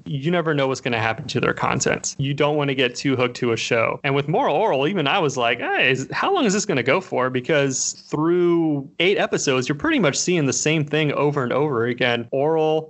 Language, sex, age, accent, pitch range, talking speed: English, male, 30-49, American, 125-150 Hz, 250 wpm